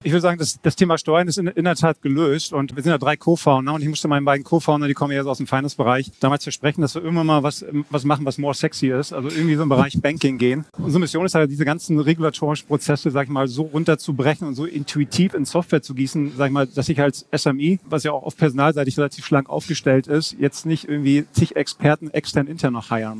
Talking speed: 255 wpm